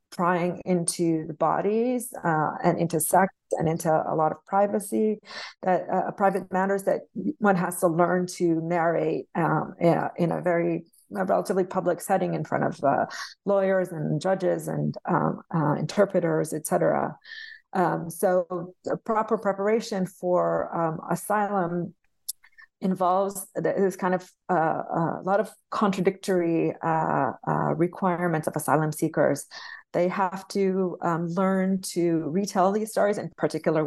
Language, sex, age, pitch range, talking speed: English, female, 40-59, 165-195 Hz, 145 wpm